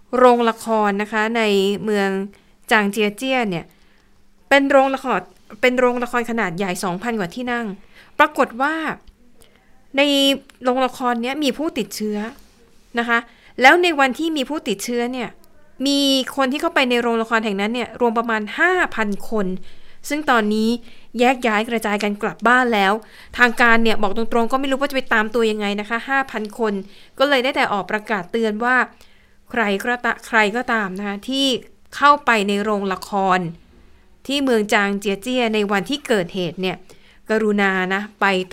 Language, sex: Thai, female